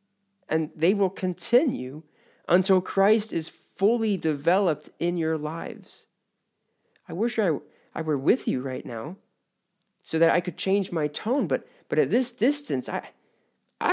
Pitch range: 135-195 Hz